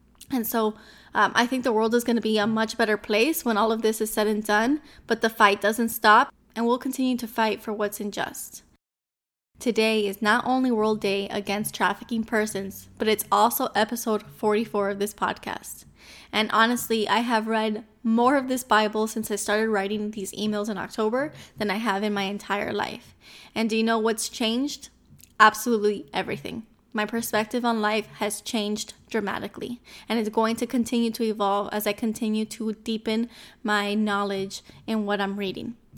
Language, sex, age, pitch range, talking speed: English, female, 10-29, 210-235 Hz, 185 wpm